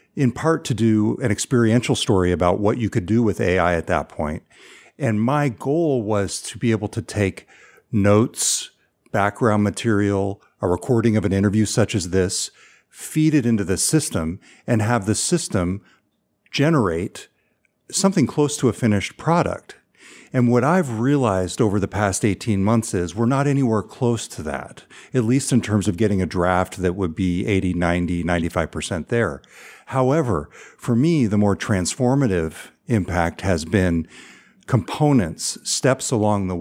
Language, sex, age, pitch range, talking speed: English, male, 50-69, 95-120 Hz, 155 wpm